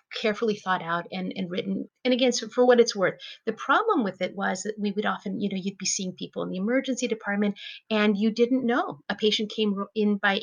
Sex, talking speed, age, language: female, 230 wpm, 30-49, English